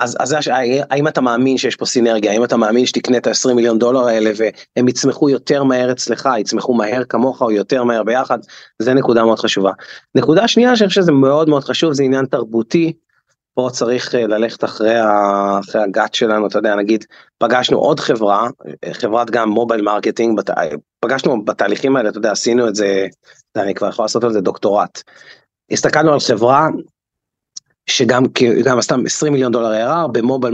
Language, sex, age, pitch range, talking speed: Hebrew, male, 30-49, 115-135 Hz, 170 wpm